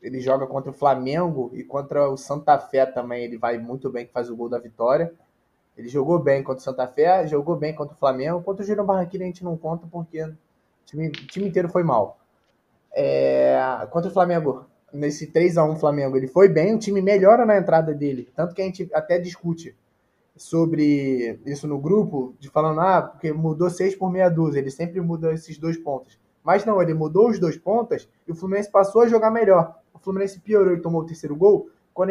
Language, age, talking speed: Portuguese, 20-39, 205 wpm